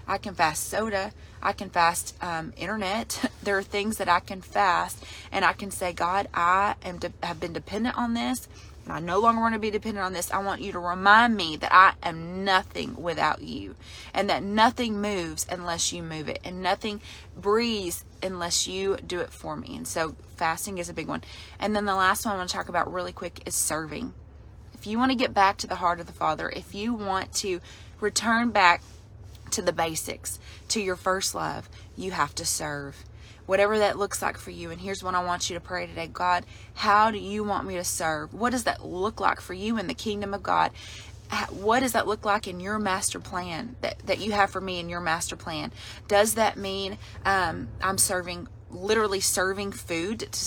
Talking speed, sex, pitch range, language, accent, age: 215 wpm, female, 175-210 Hz, English, American, 20-39